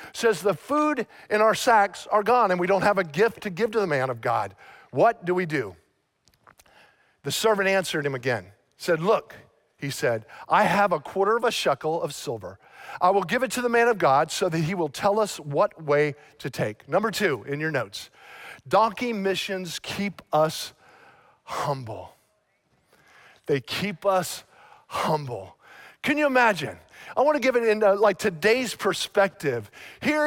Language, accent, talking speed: English, American, 175 wpm